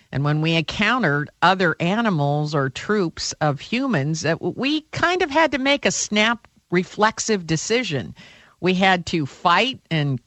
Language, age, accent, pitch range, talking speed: English, 50-69, American, 145-215 Hz, 145 wpm